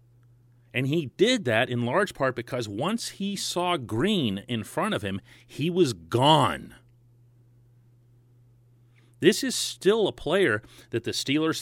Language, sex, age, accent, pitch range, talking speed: English, male, 40-59, American, 120-155 Hz, 140 wpm